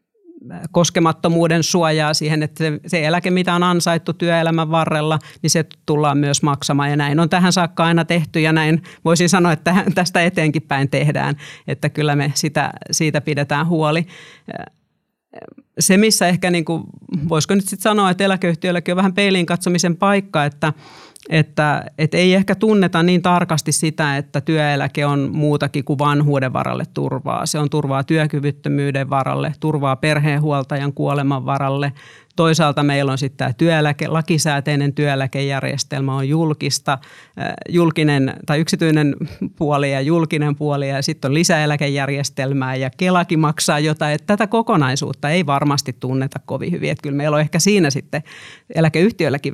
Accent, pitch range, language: native, 145-170 Hz, Finnish